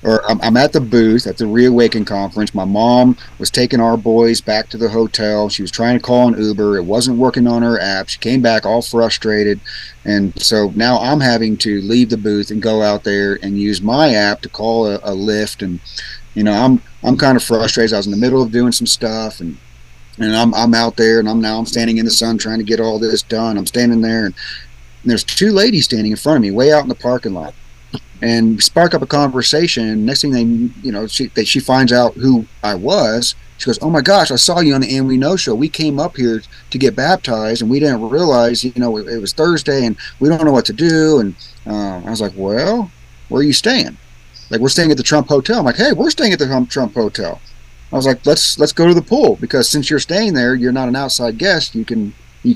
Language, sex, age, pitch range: English, male, 40-59, 110-135 Hz